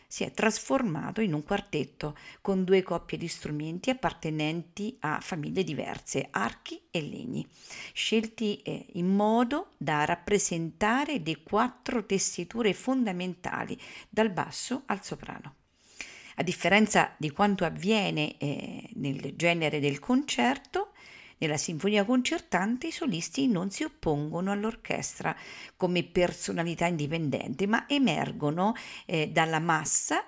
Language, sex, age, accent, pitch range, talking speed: Italian, female, 50-69, native, 160-235 Hz, 115 wpm